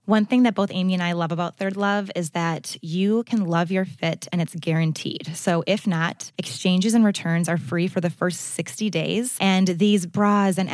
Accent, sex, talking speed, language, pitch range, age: American, female, 210 wpm, English, 170-205 Hz, 20-39